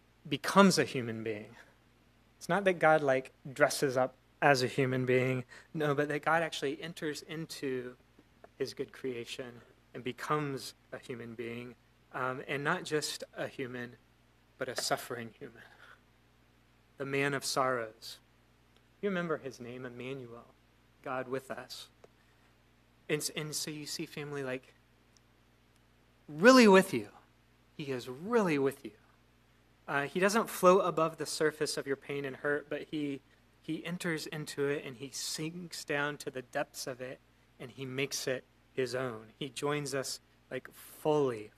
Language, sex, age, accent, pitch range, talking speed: English, male, 30-49, American, 115-150 Hz, 150 wpm